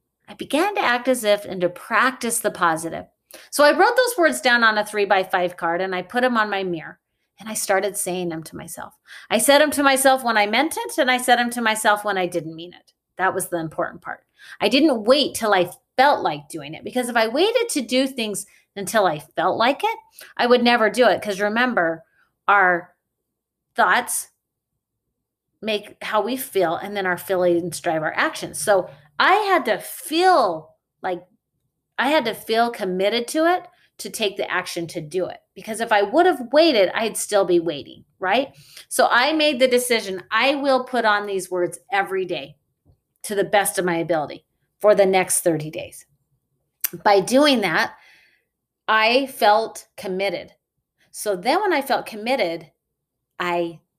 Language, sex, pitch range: English, female, 175-250 Hz